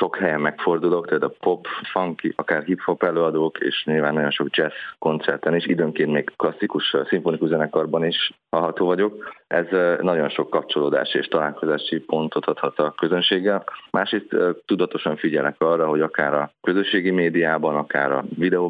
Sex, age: male, 30-49